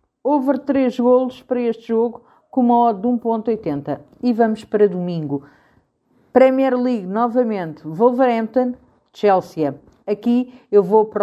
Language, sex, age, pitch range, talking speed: Portuguese, female, 50-69, 180-250 Hz, 130 wpm